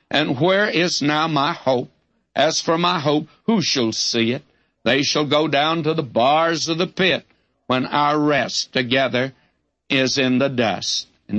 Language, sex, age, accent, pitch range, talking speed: English, male, 60-79, American, 125-155 Hz, 175 wpm